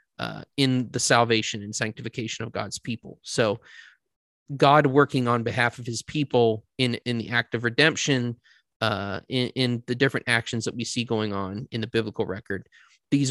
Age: 30-49